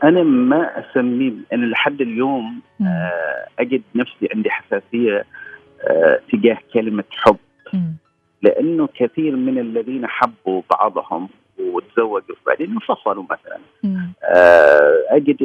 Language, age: Arabic, 40-59